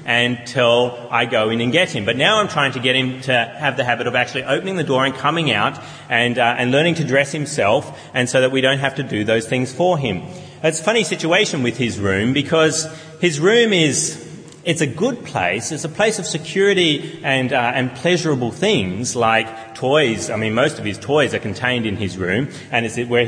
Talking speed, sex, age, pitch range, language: 220 wpm, male, 30-49, 125-170 Hz, English